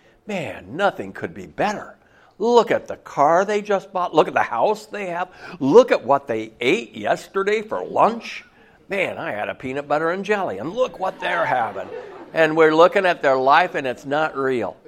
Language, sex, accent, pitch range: English, male, American, 130-180 Hz